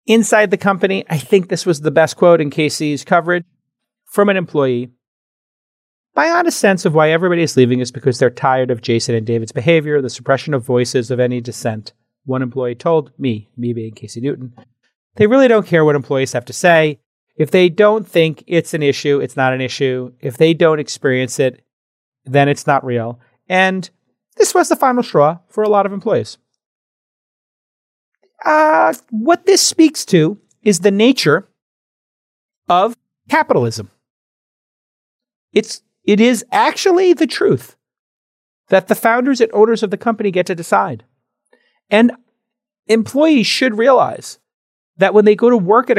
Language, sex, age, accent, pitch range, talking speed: English, male, 30-49, American, 130-215 Hz, 165 wpm